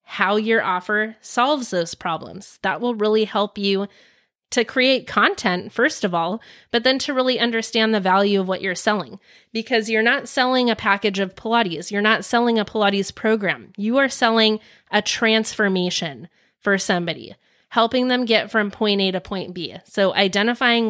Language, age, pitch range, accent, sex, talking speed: English, 30-49, 205-245 Hz, American, female, 170 wpm